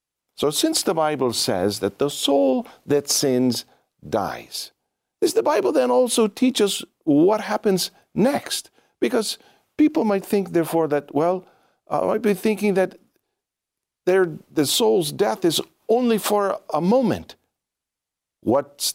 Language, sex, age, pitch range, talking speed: English, male, 50-69, 125-185 Hz, 135 wpm